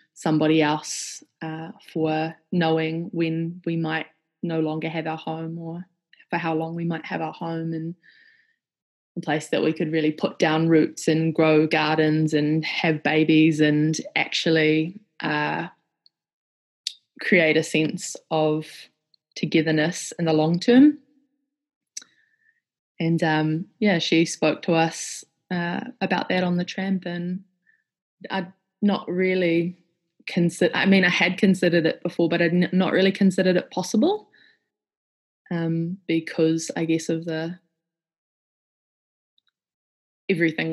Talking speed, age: 135 wpm, 20-39